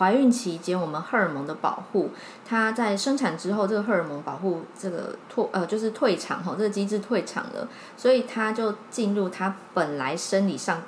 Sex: female